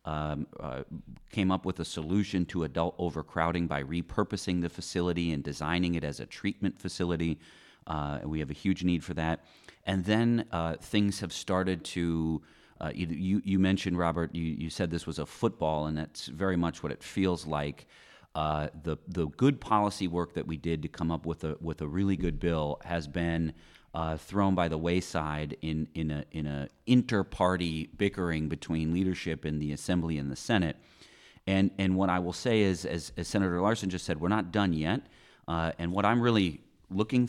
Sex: male